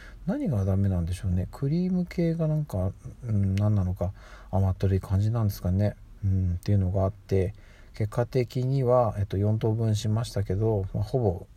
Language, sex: Japanese, male